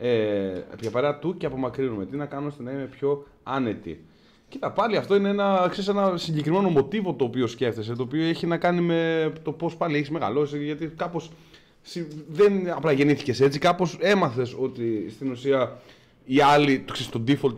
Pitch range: 115-165 Hz